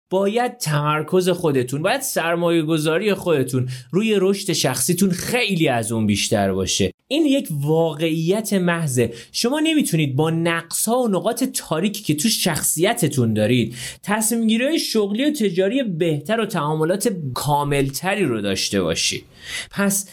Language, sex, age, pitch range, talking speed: Persian, male, 30-49, 140-210 Hz, 120 wpm